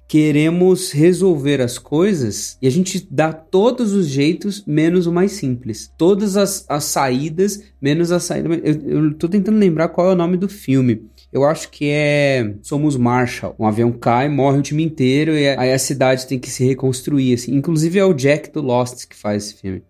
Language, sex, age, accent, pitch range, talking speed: Portuguese, male, 20-39, Brazilian, 120-175 Hz, 195 wpm